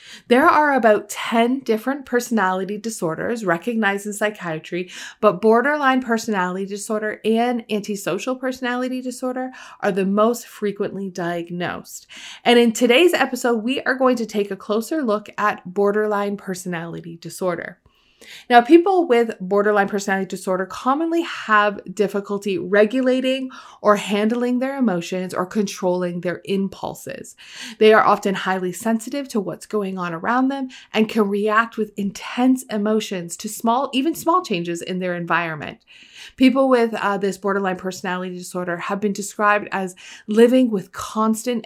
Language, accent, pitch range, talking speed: English, American, 190-240 Hz, 140 wpm